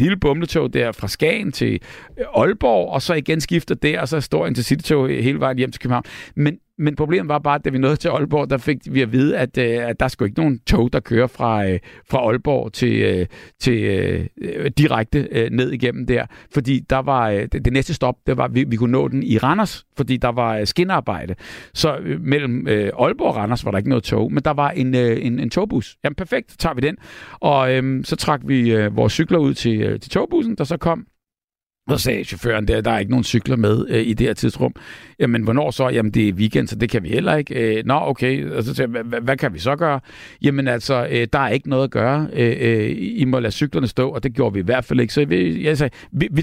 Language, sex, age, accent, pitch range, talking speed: Danish, male, 60-79, native, 115-145 Hz, 235 wpm